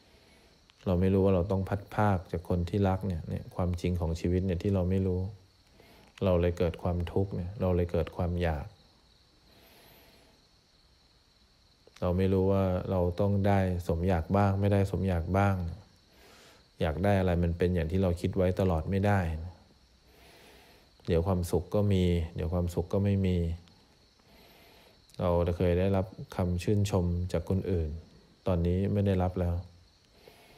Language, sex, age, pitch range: English, male, 20-39, 85-95 Hz